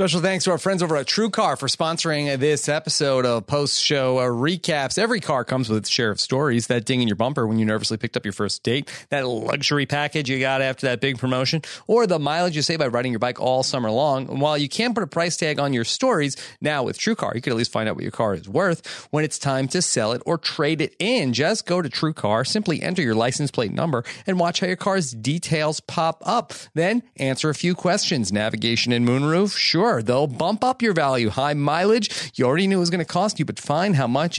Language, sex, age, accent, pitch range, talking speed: English, male, 30-49, American, 125-180 Hz, 250 wpm